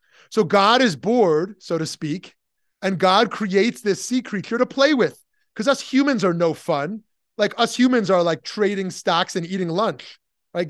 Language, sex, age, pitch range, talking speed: English, male, 30-49, 160-225 Hz, 185 wpm